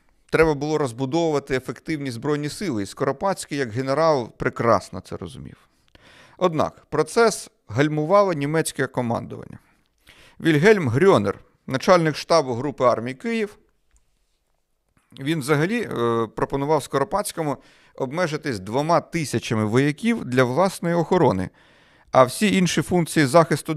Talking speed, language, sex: 105 wpm, Russian, male